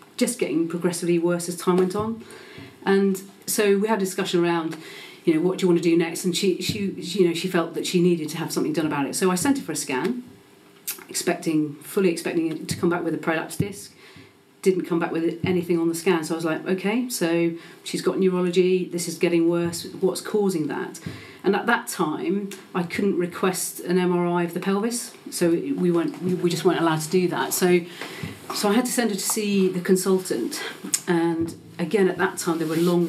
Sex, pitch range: female, 165-190 Hz